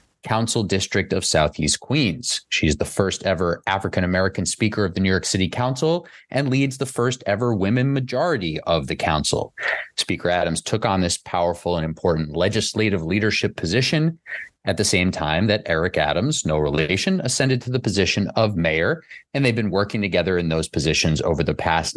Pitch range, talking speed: 85-120 Hz, 175 wpm